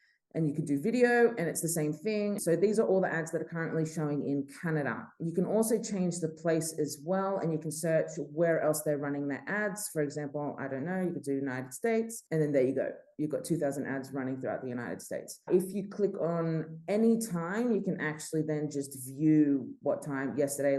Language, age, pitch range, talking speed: English, 20-39, 140-180 Hz, 230 wpm